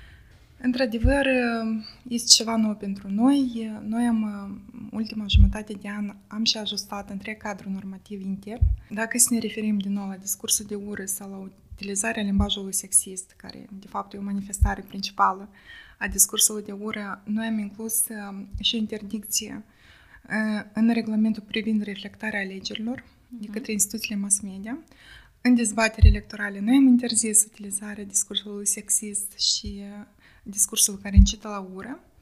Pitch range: 200-225 Hz